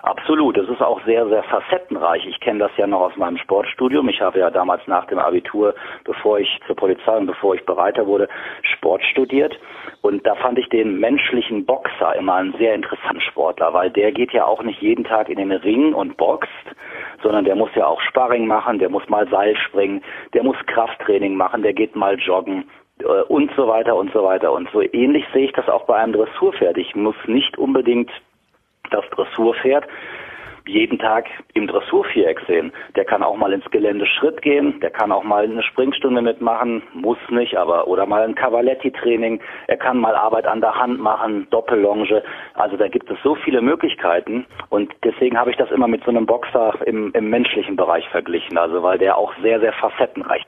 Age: 40-59